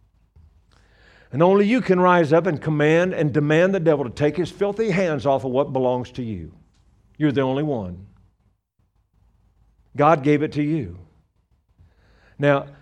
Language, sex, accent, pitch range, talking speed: English, male, American, 100-165 Hz, 155 wpm